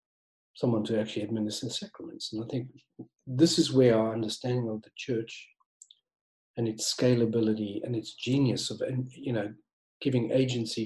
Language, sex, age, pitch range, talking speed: English, male, 40-59, 110-135 Hz, 150 wpm